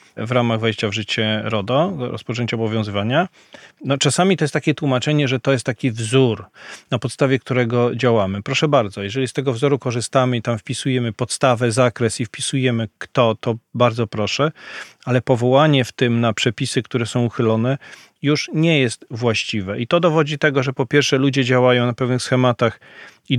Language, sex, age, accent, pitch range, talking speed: Polish, male, 40-59, native, 115-140 Hz, 175 wpm